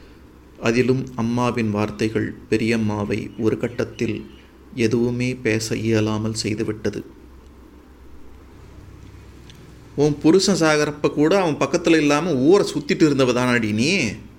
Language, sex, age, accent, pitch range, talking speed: Tamil, male, 30-49, native, 75-120 Hz, 90 wpm